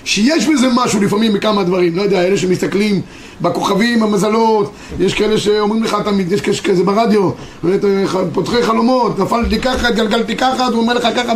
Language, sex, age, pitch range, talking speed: Hebrew, male, 30-49, 190-245 Hz, 155 wpm